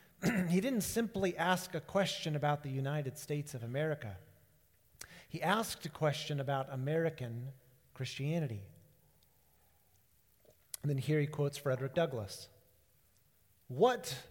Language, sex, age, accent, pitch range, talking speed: English, male, 40-59, American, 140-185 Hz, 115 wpm